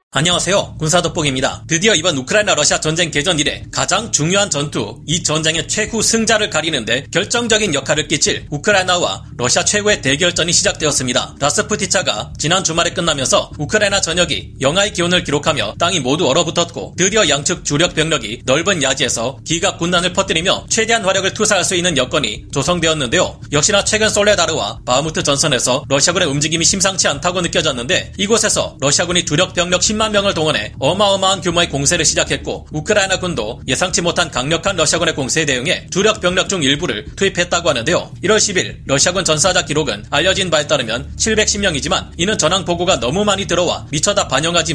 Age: 30-49